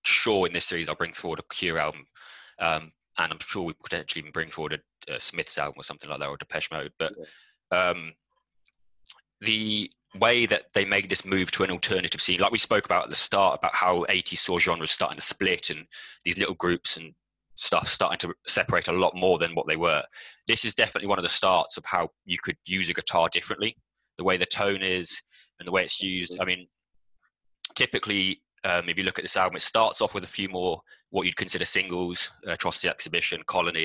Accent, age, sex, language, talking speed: British, 20-39, male, English, 220 wpm